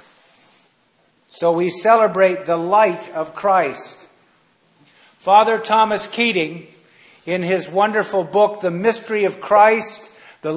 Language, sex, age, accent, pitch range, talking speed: English, male, 50-69, American, 180-210 Hz, 110 wpm